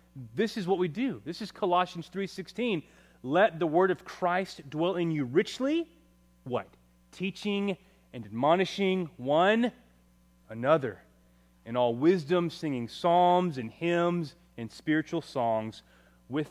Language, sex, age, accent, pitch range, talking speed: English, male, 30-49, American, 120-180 Hz, 125 wpm